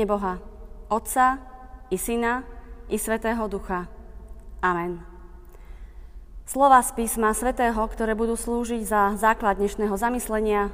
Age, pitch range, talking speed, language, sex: 20-39, 200-250 Hz, 105 wpm, Slovak, female